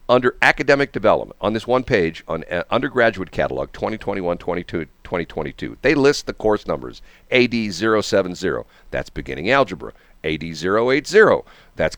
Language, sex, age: English, male, 50-69